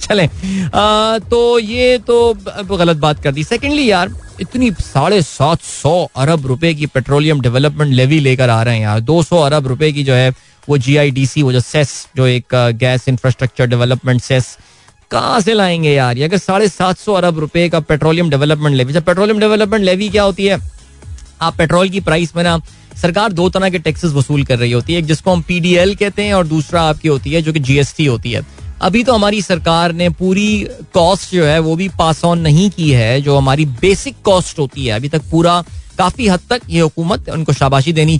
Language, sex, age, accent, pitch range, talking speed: Hindi, male, 20-39, native, 140-180 Hz, 170 wpm